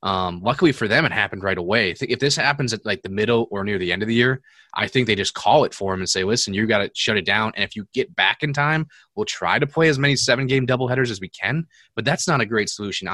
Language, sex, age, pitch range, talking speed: English, male, 20-39, 100-130 Hz, 295 wpm